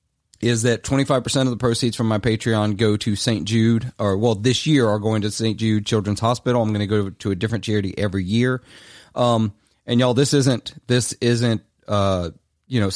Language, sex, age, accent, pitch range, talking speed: English, male, 30-49, American, 100-120 Hz, 205 wpm